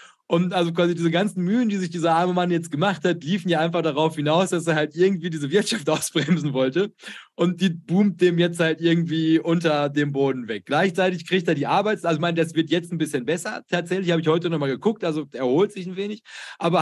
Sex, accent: male, German